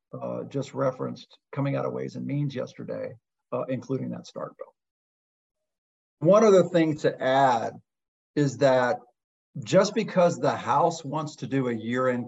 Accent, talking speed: American, 155 wpm